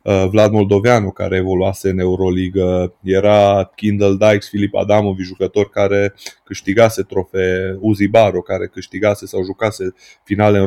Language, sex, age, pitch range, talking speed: Romanian, male, 20-39, 95-105 Hz, 130 wpm